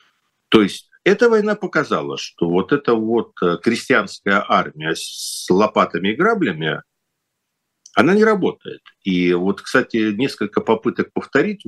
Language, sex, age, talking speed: Russian, male, 50-69, 125 wpm